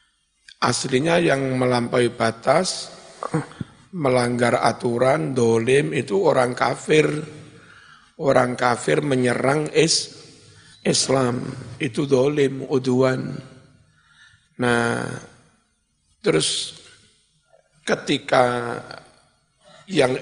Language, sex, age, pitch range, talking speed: Indonesian, male, 50-69, 125-140 Hz, 60 wpm